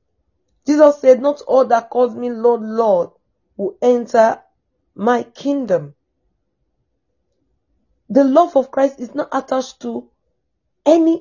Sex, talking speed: female, 120 wpm